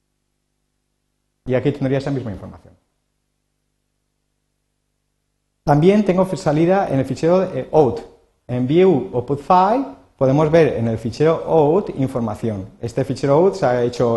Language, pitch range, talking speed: Spanish, 110-145 Hz, 140 wpm